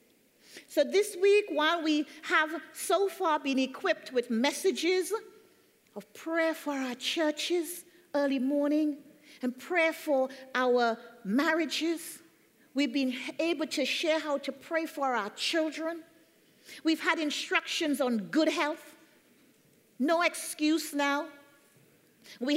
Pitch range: 255-325 Hz